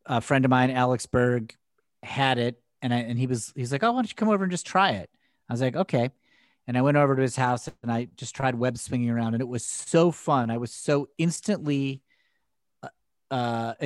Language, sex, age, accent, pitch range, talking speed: English, male, 40-59, American, 115-135 Hz, 235 wpm